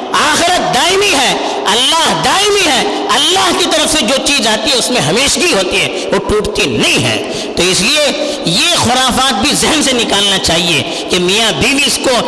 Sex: female